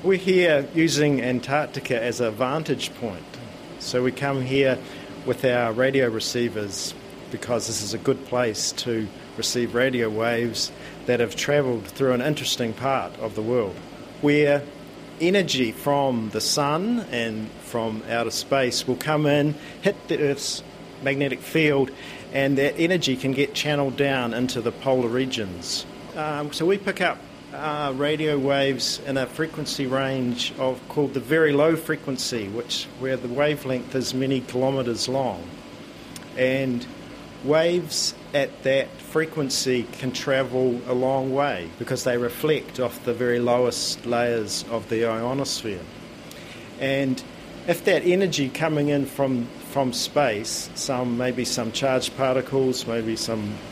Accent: Australian